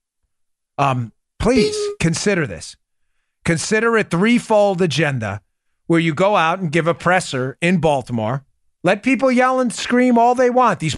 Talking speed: 150 wpm